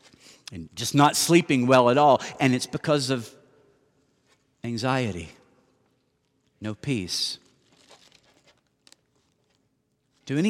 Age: 50-69